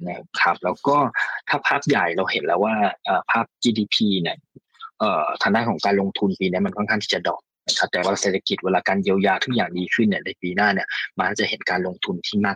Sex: male